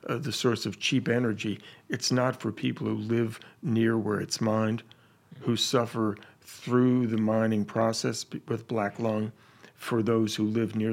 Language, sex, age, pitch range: English, male, 40-59, 110-125 Hz